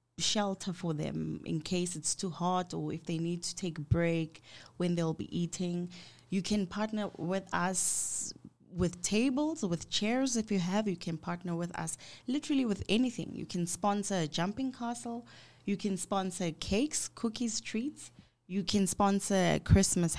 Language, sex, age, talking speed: English, female, 20-39, 170 wpm